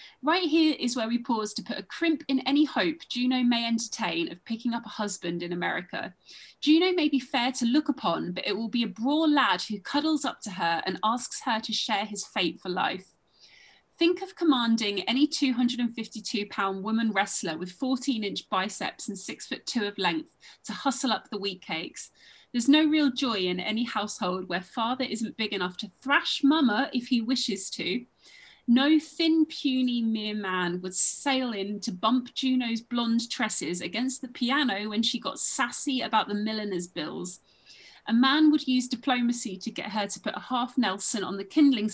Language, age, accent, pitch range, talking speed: English, 30-49, British, 205-265 Hz, 190 wpm